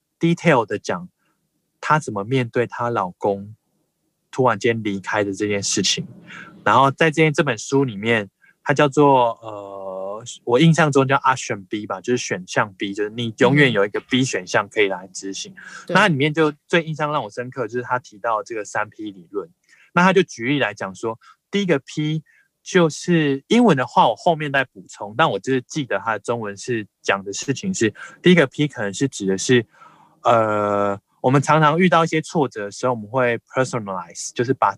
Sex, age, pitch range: male, 20-39, 110-150 Hz